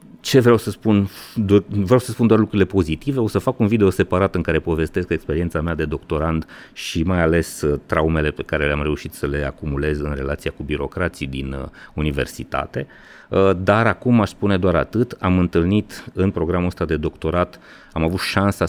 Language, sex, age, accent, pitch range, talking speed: Romanian, male, 30-49, native, 80-95 Hz, 180 wpm